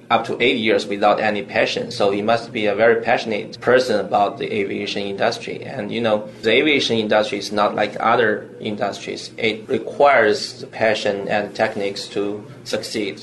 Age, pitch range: 20-39, 100-110 Hz